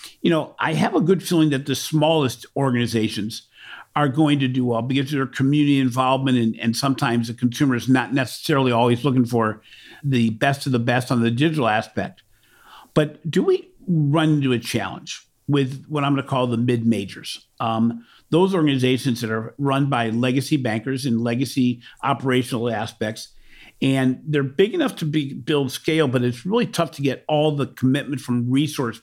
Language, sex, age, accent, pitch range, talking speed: English, male, 50-69, American, 120-150 Hz, 185 wpm